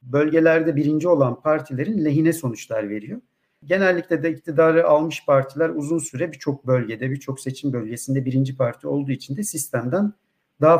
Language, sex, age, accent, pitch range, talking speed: Turkish, male, 50-69, native, 130-155 Hz, 145 wpm